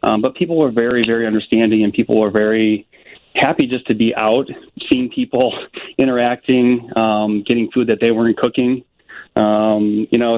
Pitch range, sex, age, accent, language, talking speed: 110-125 Hz, male, 30-49, American, English, 170 wpm